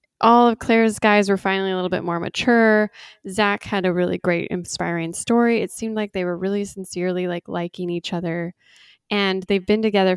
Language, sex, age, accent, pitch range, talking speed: English, female, 10-29, American, 180-220 Hz, 195 wpm